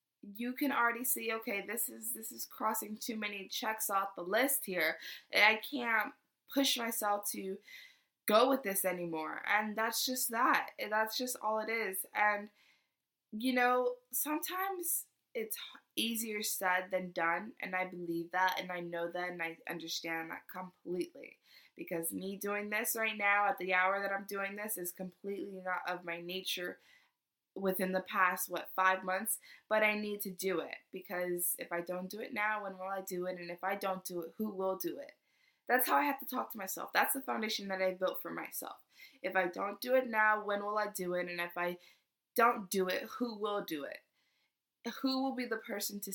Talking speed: 200 wpm